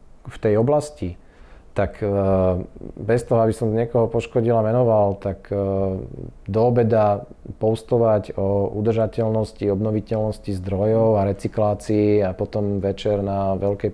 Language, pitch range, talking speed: Slovak, 95-110 Hz, 115 wpm